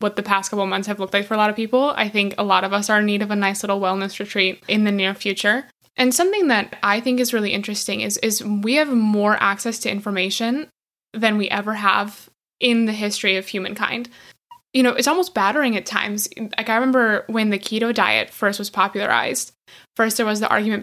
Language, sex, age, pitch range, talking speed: English, female, 10-29, 205-245 Hz, 230 wpm